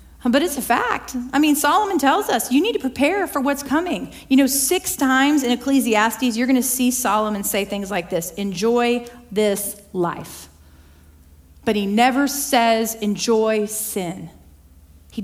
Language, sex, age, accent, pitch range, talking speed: English, female, 40-59, American, 195-255 Hz, 160 wpm